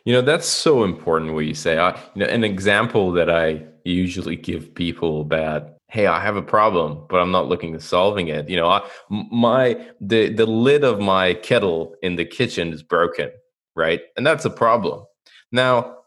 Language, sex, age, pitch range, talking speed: English, male, 20-39, 85-120 Hz, 195 wpm